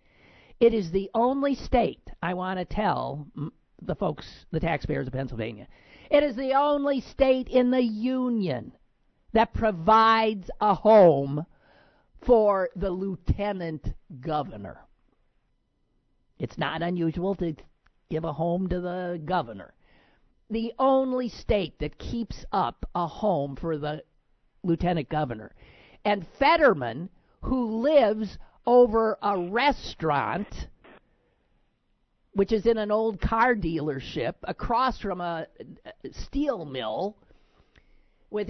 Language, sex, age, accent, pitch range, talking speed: English, male, 50-69, American, 175-255 Hz, 115 wpm